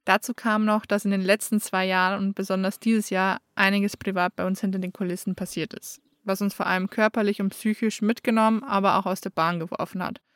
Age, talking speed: 20-39, 215 wpm